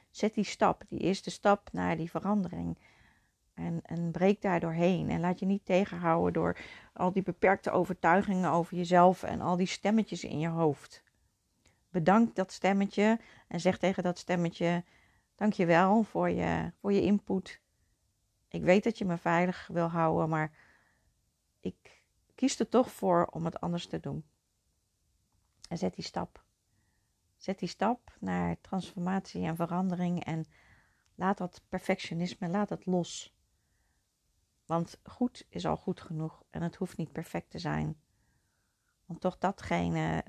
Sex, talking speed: female, 150 wpm